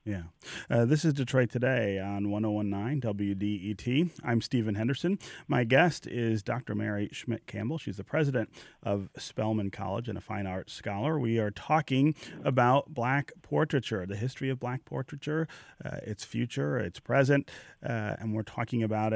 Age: 30-49